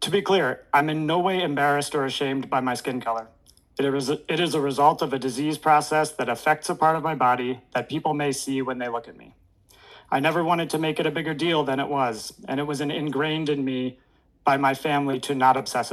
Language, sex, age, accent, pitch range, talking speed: English, male, 30-49, American, 125-155 Hz, 235 wpm